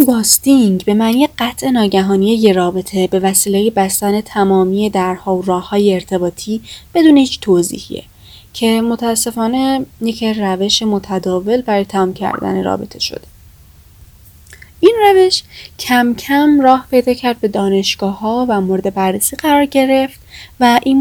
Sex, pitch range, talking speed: female, 190-250 Hz, 130 wpm